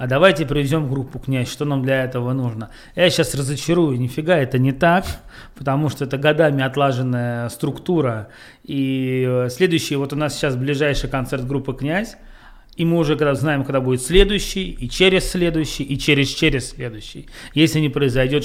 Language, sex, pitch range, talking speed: Russian, male, 130-155 Hz, 160 wpm